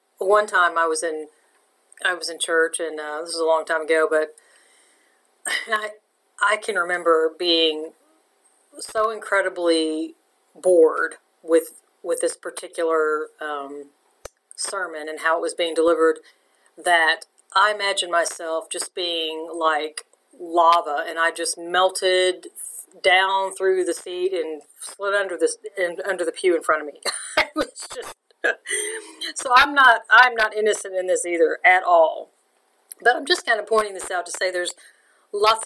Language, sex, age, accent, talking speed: English, female, 40-59, American, 155 wpm